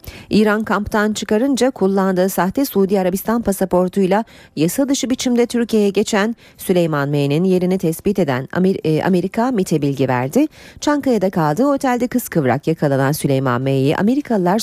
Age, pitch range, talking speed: 30-49, 165-235 Hz, 125 wpm